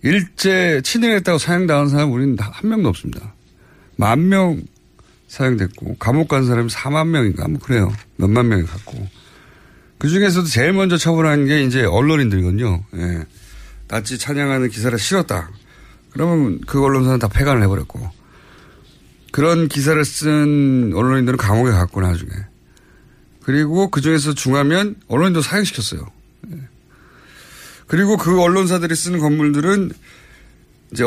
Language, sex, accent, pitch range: Korean, male, native, 100-155 Hz